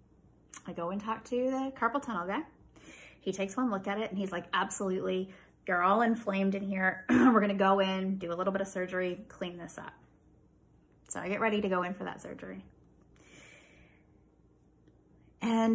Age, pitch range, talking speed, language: 20-39, 185-220 Hz, 185 wpm, English